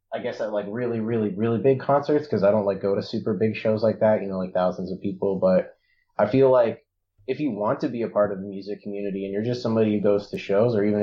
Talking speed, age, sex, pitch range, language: 275 wpm, 20-39, male, 95-115 Hz, English